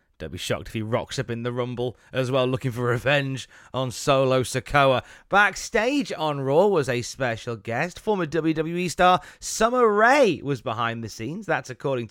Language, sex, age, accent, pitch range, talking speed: English, male, 30-49, British, 120-155 Hz, 180 wpm